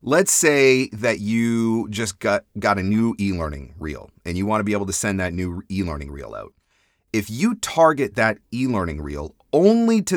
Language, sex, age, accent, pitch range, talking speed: English, male, 30-49, American, 85-115 Hz, 185 wpm